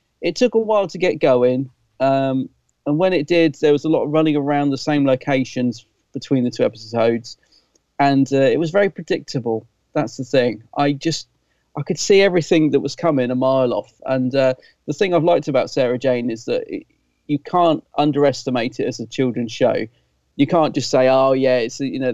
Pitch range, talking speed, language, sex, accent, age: 125-150 Hz, 205 wpm, English, male, British, 40-59